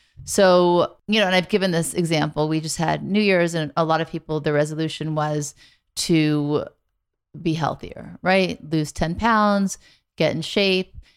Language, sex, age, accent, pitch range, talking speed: English, female, 30-49, American, 155-185 Hz, 165 wpm